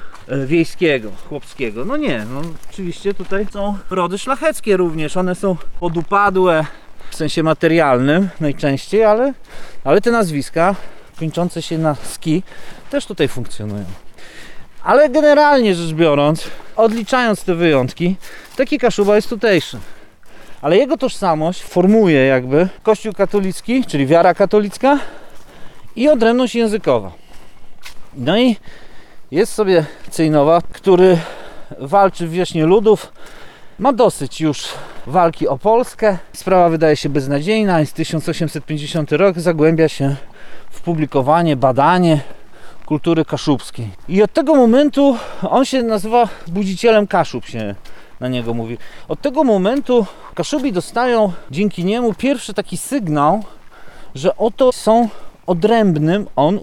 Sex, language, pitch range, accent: male, Polish, 155-215 Hz, native